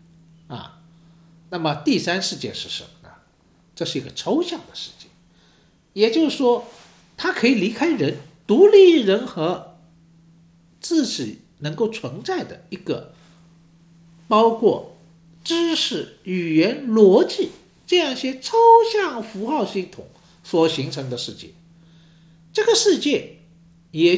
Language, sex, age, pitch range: Chinese, male, 60-79, 165-255 Hz